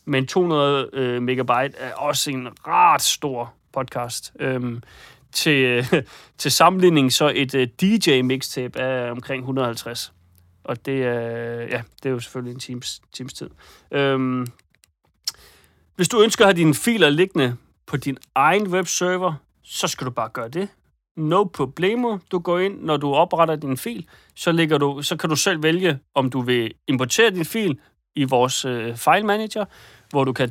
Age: 30-49